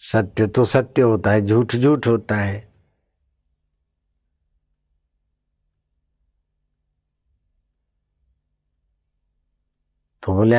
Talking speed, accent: 60 wpm, native